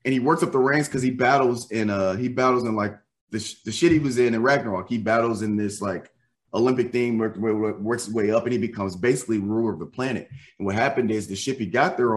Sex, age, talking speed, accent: male, 20-39, 255 wpm, American